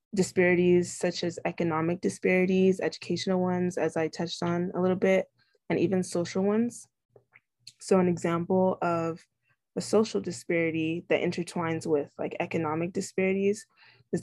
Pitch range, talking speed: 160-185 Hz, 135 wpm